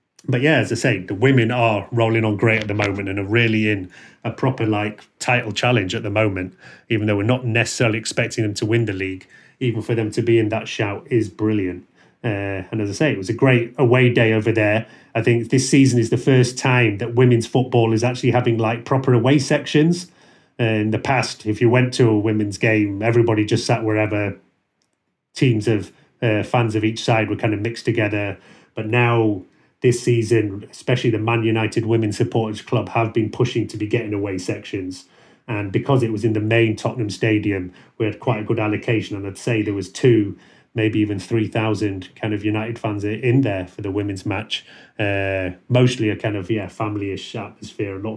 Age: 30-49